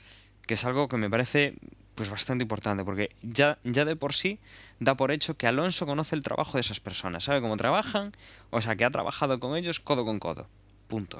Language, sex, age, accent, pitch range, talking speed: Spanish, male, 20-39, Spanish, 100-130 Hz, 215 wpm